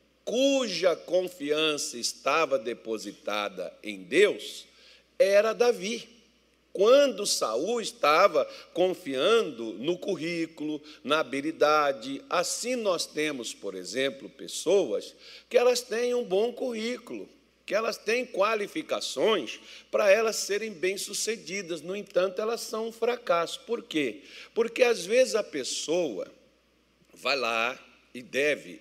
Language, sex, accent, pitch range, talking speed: Portuguese, male, Brazilian, 140-235 Hz, 110 wpm